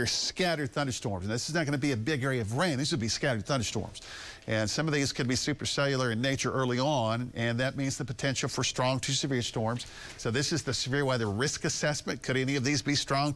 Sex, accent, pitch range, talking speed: male, American, 115-145 Hz, 245 wpm